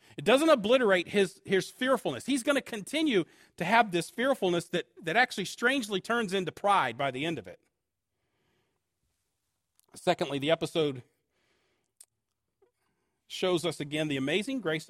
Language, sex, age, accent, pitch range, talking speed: English, male, 40-59, American, 145-220 Hz, 140 wpm